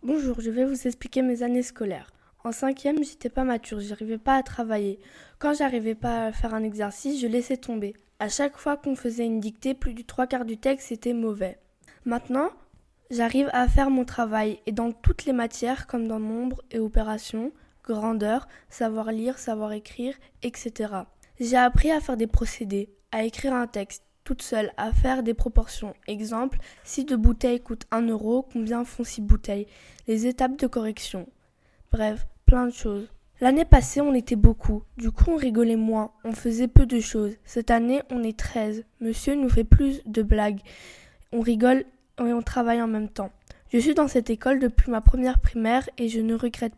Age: 10-29